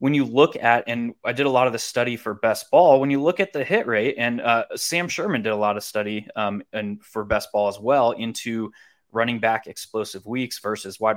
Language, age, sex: English, 20-39, male